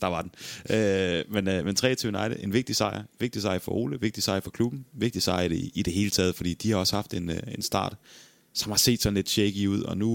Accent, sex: native, male